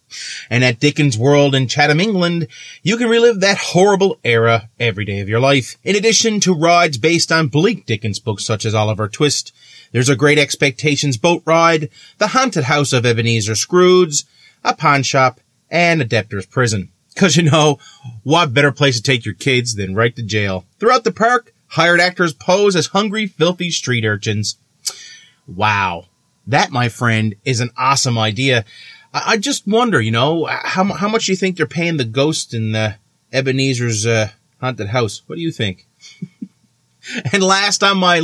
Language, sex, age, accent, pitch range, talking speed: English, male, 30-49, American, 115-170 Hz, 175 wpm